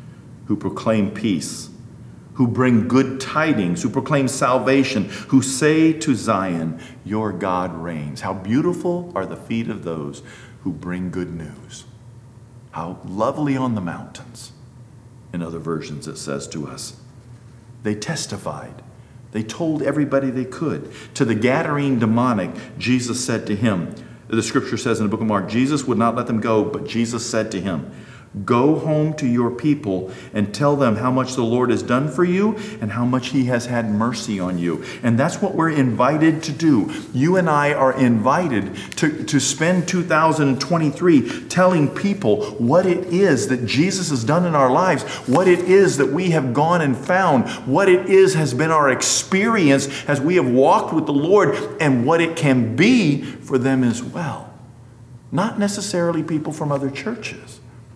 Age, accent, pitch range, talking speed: 50-69, American, 115-150 Hz, 170 wpm